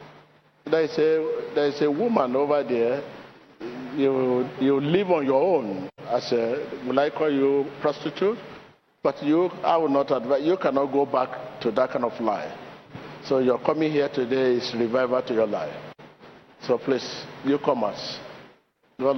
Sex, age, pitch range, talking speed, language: male, 50-69, 130-155 Hz, 165 wpm, English